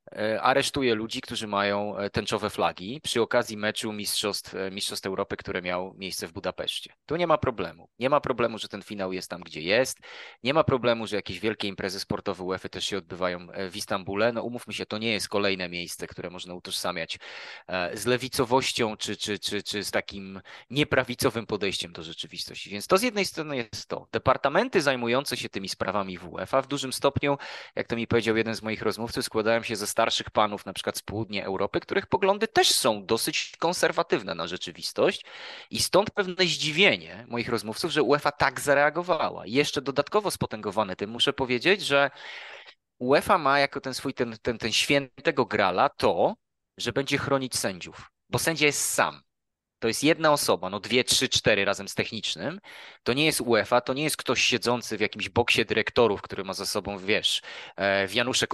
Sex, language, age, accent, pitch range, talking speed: male, Polish, 20-39, native, 100-135 Hz, 180 wpm